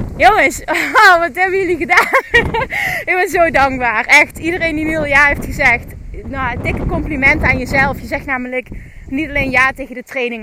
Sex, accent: female, Dutch